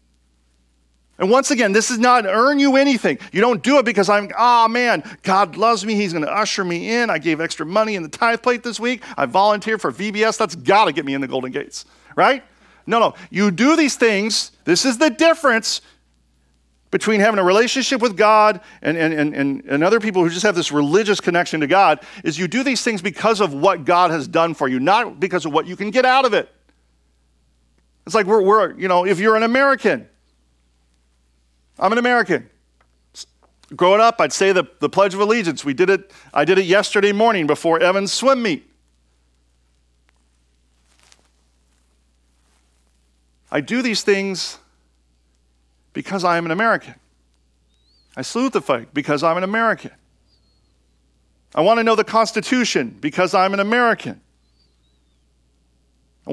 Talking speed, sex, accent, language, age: 175 wpm, male, American, English, 40-59